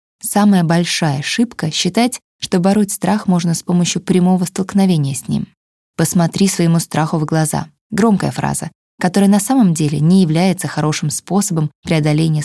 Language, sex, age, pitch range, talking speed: Russian, female, 20-39, 155-195 Hz, 145 wpm